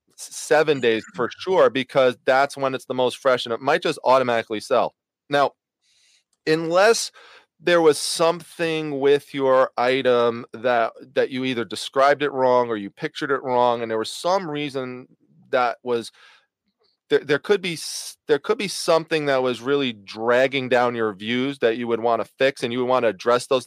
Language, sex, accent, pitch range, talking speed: English, male, American, 120-150 Hz, 185 wpm